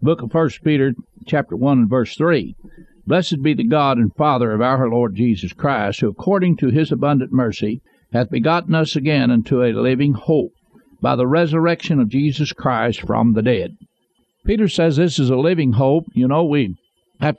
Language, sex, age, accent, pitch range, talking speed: English, male, 60-79, American, 125-160 Hz, 185 wpm